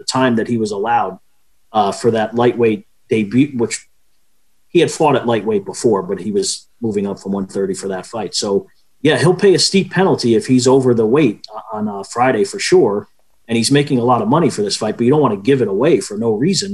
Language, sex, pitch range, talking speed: English, male, 120-155 Hz, 240 wpm